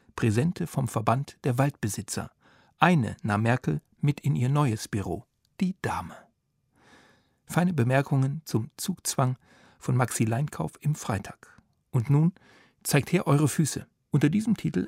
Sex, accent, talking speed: male, German, 135 wpm